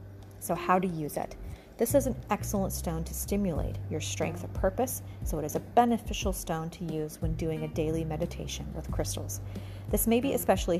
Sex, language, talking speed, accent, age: female, English, 195 wpm, American, 40-59